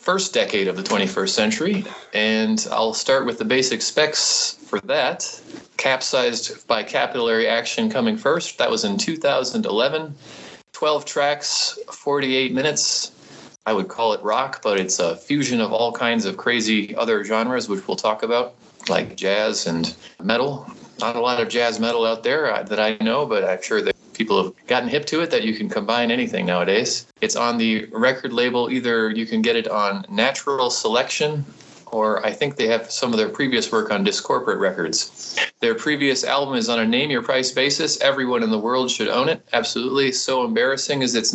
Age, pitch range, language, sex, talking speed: 30-49, 110-150 Hz, English, male, 185 wpm